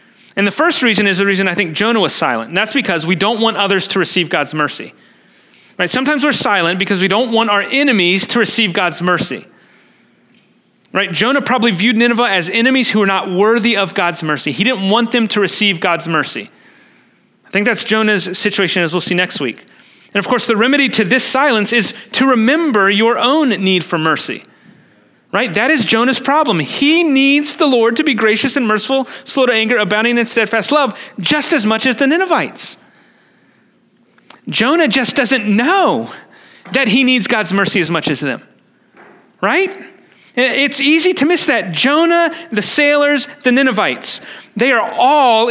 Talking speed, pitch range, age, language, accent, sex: 185 wpm, 200-270 Hz, 30-49, English, American, male